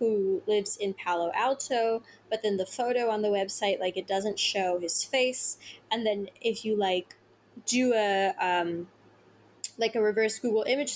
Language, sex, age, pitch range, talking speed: English, female, 20-39, 190-225 Hz, 170 wpm